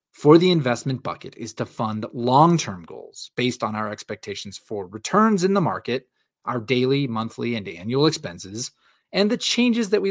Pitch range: 115-165 Hz